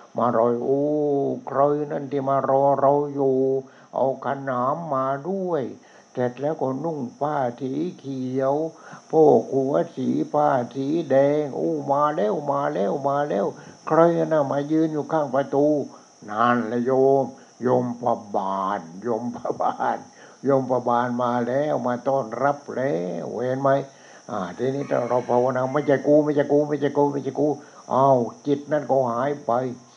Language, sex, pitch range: English, male, 120-140 Hz